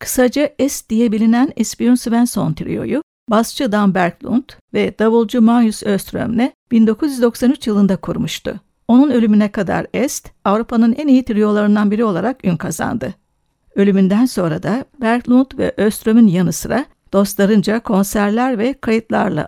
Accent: native